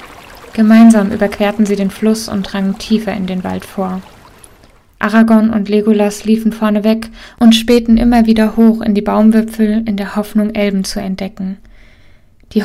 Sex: female